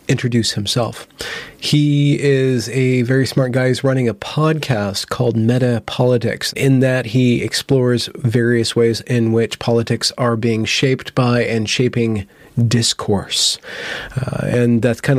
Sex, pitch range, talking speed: male, 115-135 Hz, 140 wpm